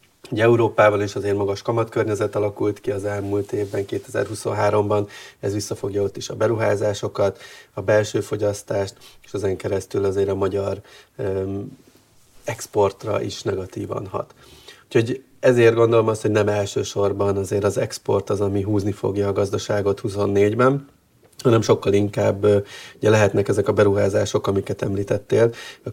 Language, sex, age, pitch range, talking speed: Hungarian, male, 30-49, 100-110 Hz, 135 wpm